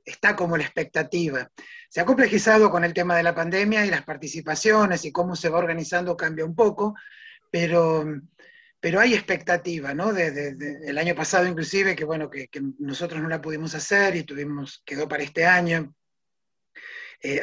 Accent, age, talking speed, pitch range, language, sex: Argentinian, 30-49, 180 wpm, 160-210 Hz, Spanish, male